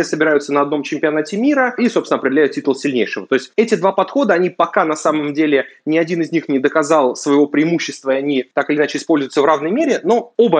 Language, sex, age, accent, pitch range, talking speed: Russian, male, 20-39, native, 135-175 Hz, 220 wpm